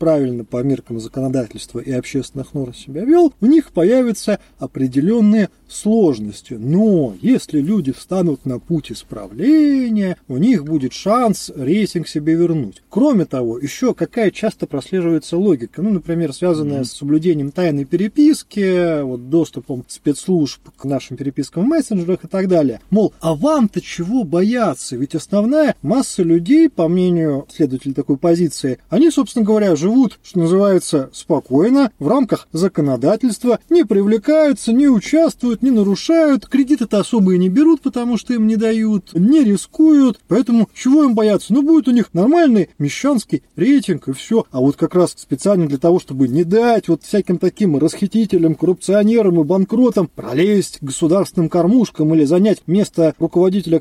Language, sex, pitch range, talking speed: Russian, male, 155-225 Hz, 145 wpm